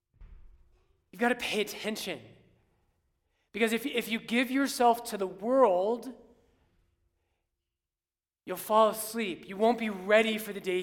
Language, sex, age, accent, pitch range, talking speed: English, male, 30-49, American, 145-230 Hz, 125 wpm